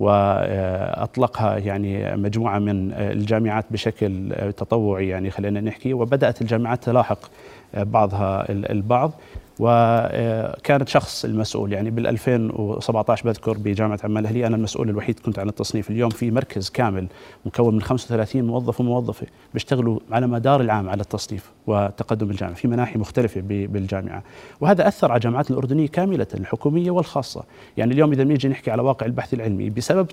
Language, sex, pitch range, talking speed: Arabic, male, 105-125 Hz, 135 wpm